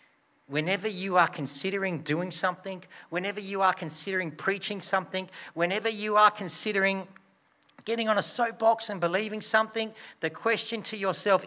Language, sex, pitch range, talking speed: English, male, 120-170 Hz, 140 wpm